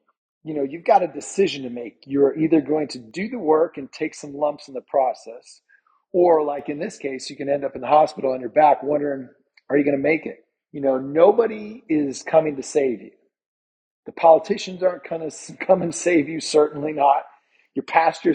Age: 40-59